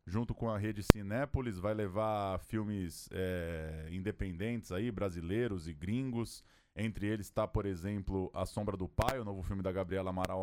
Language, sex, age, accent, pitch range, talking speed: Portuguese, male, 20-39, Brazilian, 95-115 Hz, 155 wpm